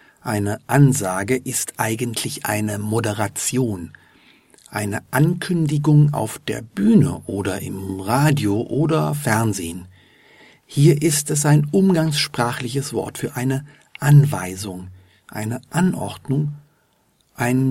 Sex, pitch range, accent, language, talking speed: male, 105-150 Hz, German, German, 95 wpm